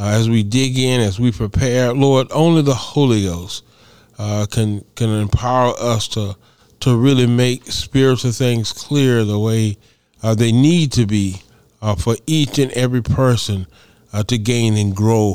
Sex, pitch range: male, 110-135 Hz